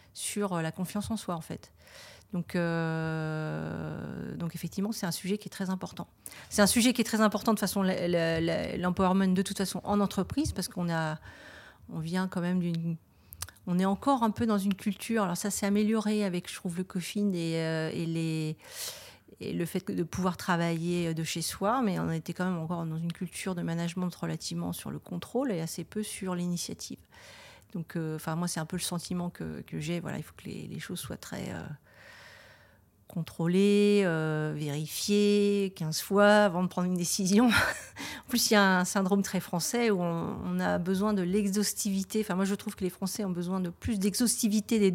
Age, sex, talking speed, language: 40-59, female, 200 wpm, French